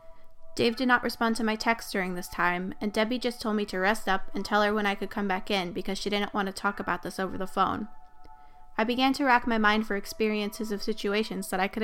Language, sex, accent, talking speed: English, female, American, 260 wpm